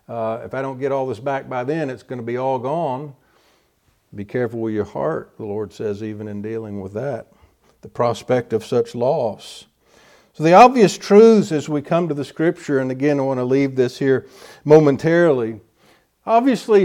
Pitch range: 110-145 Hz